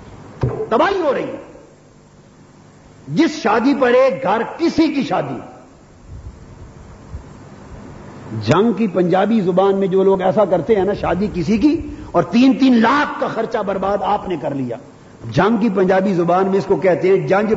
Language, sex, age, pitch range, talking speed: Urdu, male, 50-69, 170-215 Hz, 160 wpm